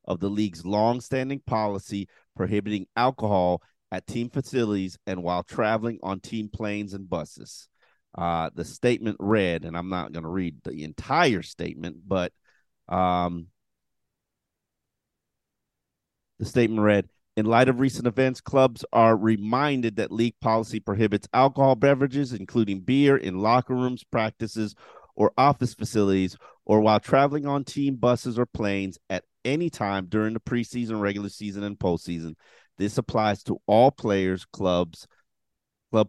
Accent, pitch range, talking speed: American, 95-125 Hz, 140 wpm